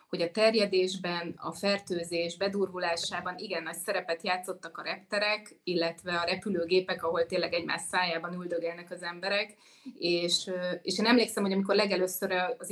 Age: 30-49